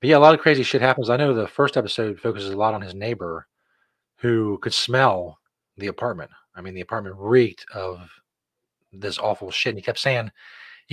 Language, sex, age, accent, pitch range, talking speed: English, male, 30-49, American, 95-120 Hz, 210 wpm